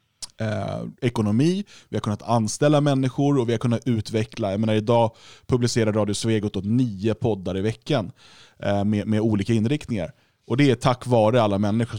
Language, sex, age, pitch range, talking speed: Swedish, male, 20-39, 105-130 Hz, 175 wpm